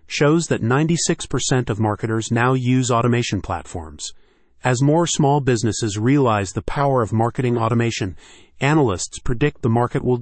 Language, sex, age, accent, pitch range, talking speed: English, male, 30-49, American, 110-135 Hz, 140 wpm